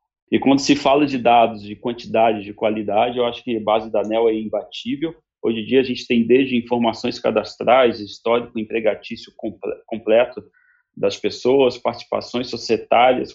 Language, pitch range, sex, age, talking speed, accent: Portuguese, 110-135 Hz, male, 40-59, 155 wpm, Brazilian